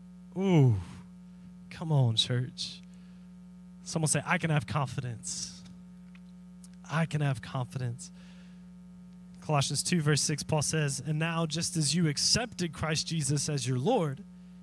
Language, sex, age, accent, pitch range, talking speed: English, male, 20-39, American, 155-180 Hz, 125 wpm